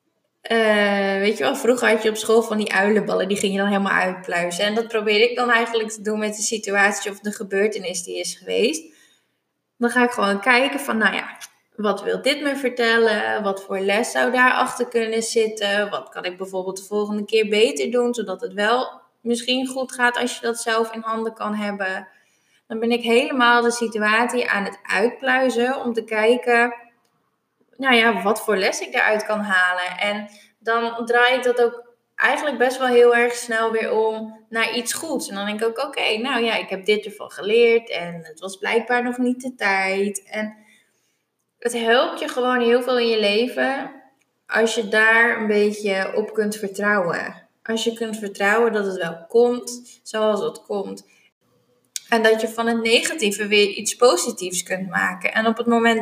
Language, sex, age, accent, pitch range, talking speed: Dutch, female, 20-39, Dutch, 205-240 Hz, 195 wpm